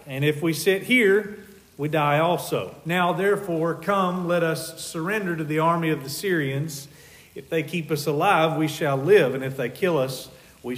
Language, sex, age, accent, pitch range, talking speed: English, male, 40-59, American, 145-180 Hz, 190 wpm